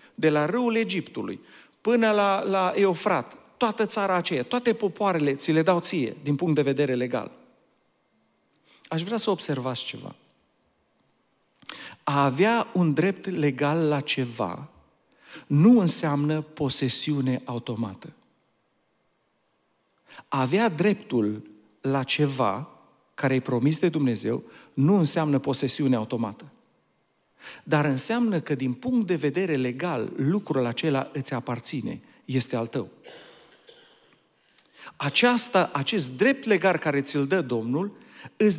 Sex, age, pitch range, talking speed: male, 50-69, 135-190 Hz, 115 wpm